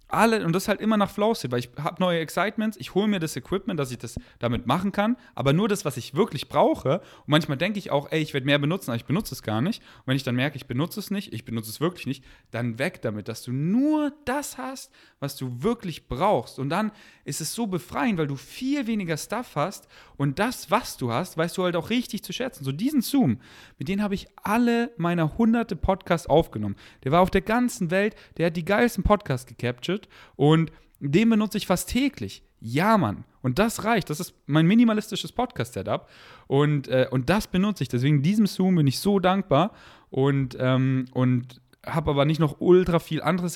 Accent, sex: German, male